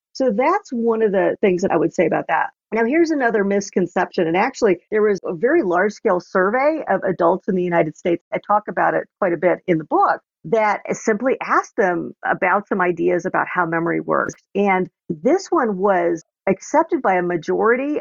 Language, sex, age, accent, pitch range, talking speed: English, female, 50-69, American, 180-245 Hz, 200 wpm